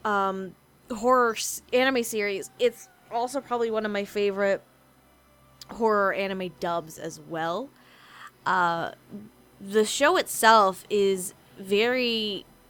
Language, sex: English, female